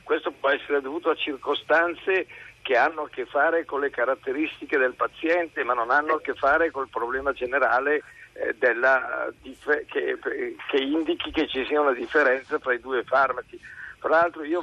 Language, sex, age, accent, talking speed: Italian, male, 50-69, native, 170 wpm